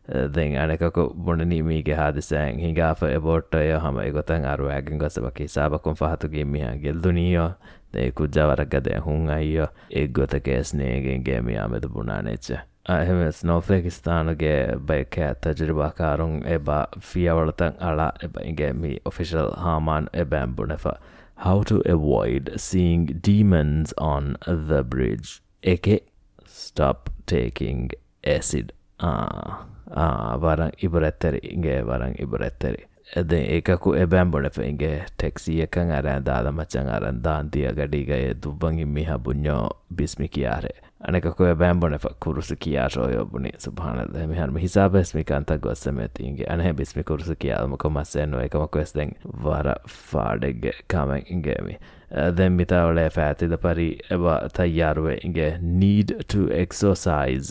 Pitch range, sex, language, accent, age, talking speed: 70-85 Hz, male, English, Indian, 20-39, 60 wpm